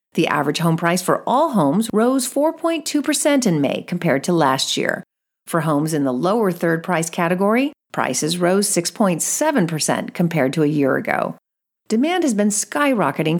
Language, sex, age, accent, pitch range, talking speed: English, female, 40-59, American, 170-235 Hz, 150 wpm